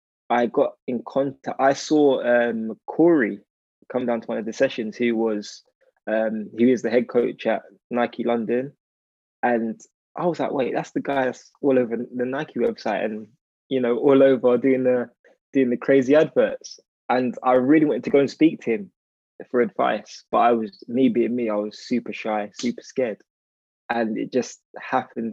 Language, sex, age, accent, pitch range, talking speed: English, male, 20-39, British, 105-125 Hz, 185 wpm